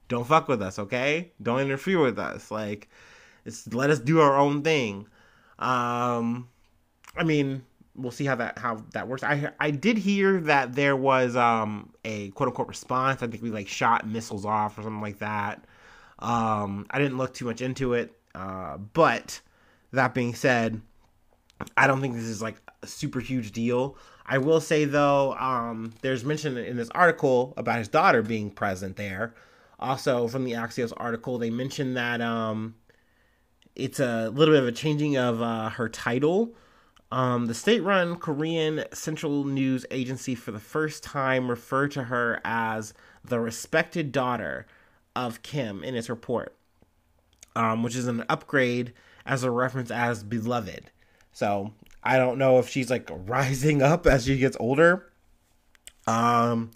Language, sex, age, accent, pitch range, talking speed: English, male, 30-49, American, 115-135 Hz, 165 wpm